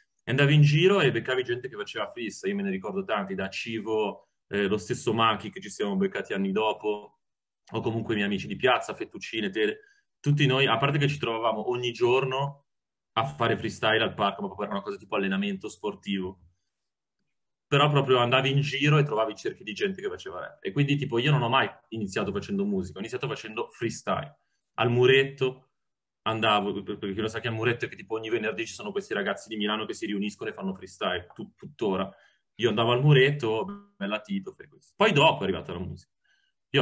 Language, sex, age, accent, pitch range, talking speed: Italian, male, 30-49, native, 105-145 Hz, 200 wpm